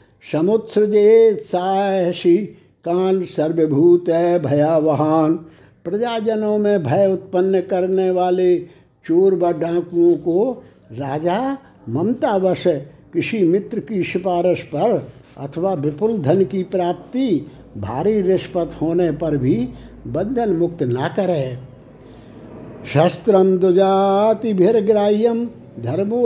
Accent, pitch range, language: native, 160-210 Hz, Hindi